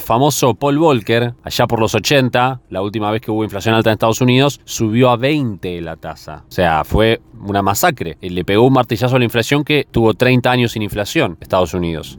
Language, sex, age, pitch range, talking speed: Spanish, male, 20-39, 100-130 Hz, 205 wpm